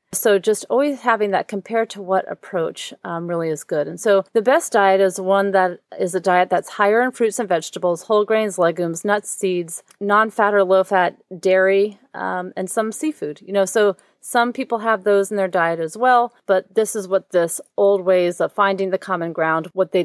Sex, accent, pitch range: female, American, 180-220 Hz